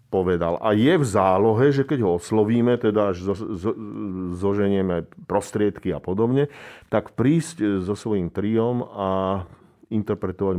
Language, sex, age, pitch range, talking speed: Slovak, male, 40-59, 95-120 Hz, 135 wpm